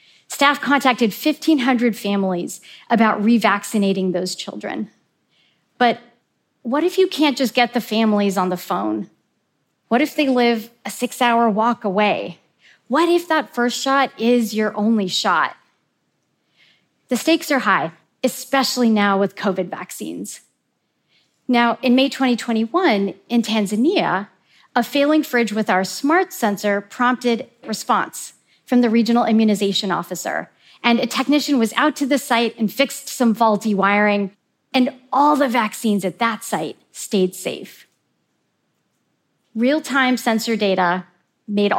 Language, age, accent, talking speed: English, 40-59, American, 130 wpm